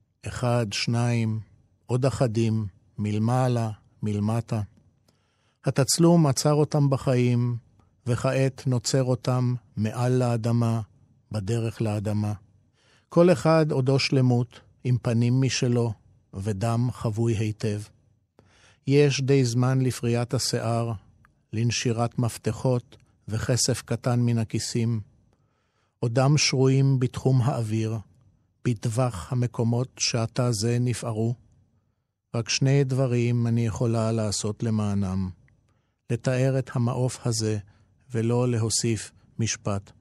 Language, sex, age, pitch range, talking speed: Hebrew, male, 50-69, 110-135 Hz, 90 wpm